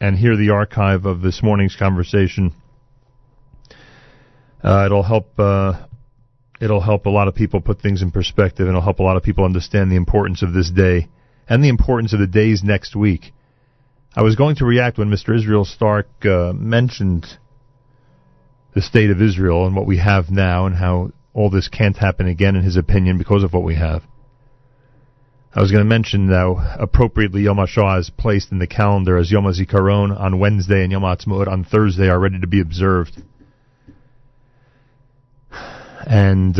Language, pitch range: English, 95-125 Hz